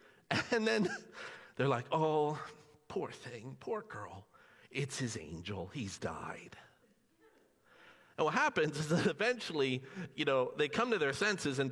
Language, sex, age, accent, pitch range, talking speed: English, male, 50-69, American, 135-210 Hz, 145 wpm